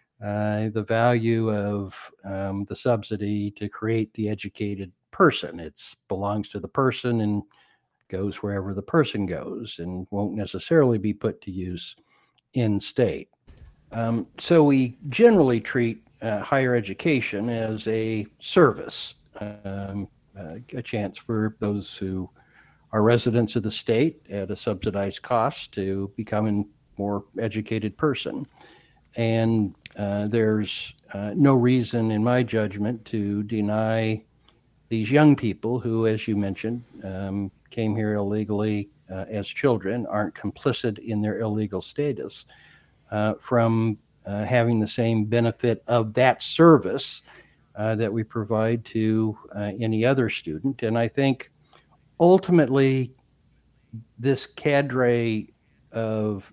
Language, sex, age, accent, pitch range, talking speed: English, male, 60-79, American, 105-120 Hz, 125 wpm